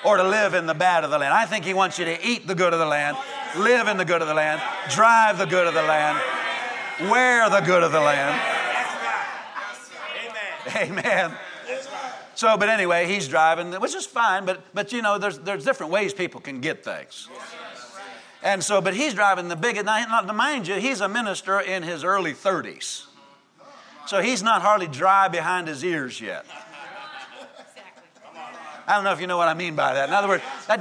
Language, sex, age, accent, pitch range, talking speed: English, male, 50-69, American, 170-215 Hz, 200 wpm